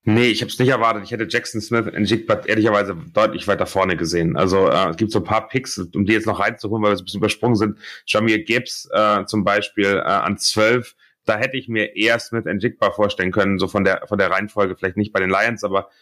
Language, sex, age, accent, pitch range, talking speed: German, male, 30-49, German, 100-110 Hz, 250 wpm